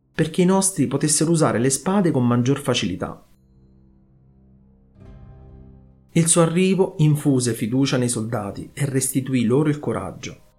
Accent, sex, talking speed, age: native, male, 125 wpm, 30-49